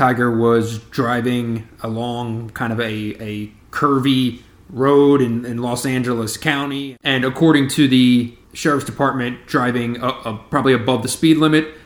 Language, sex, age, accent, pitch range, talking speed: English, male, 30-49, American, 110-130 Hz, 145 wpm